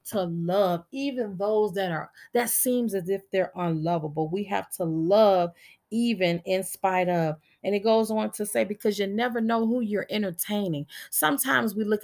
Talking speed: 180 wpm